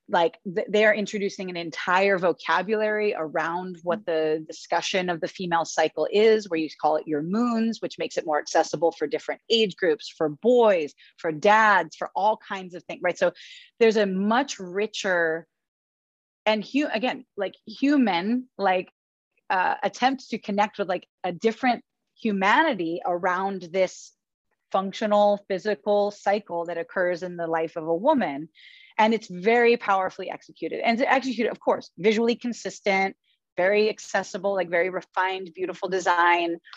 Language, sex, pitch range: English, female, 180-225 Hz